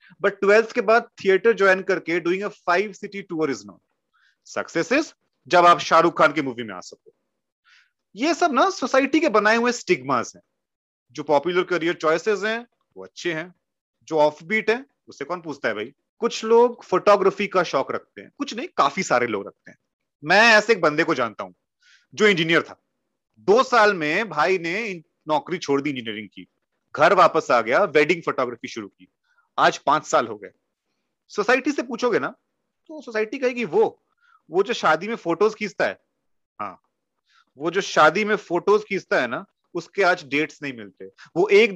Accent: native